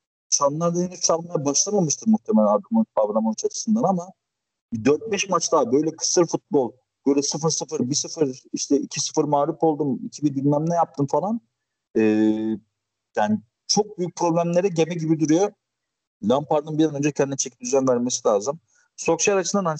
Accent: native